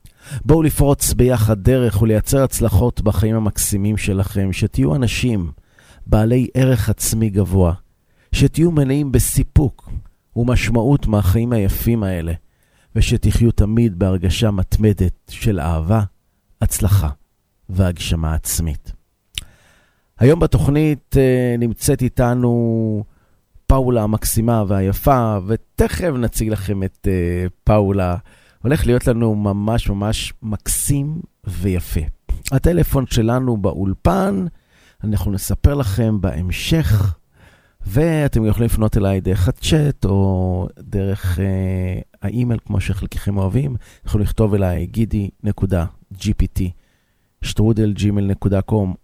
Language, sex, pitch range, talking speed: Hebrew, male, 95-120 Hz, 90 wpm